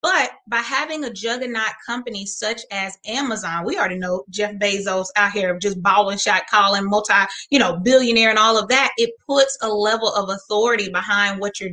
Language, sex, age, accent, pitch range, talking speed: English, female, 20-39, American, 200-250 Hz, 190 wpm